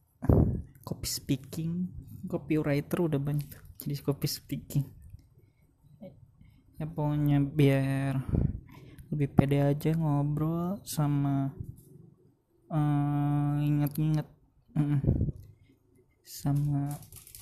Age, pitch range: 20-39, 135-150 Hz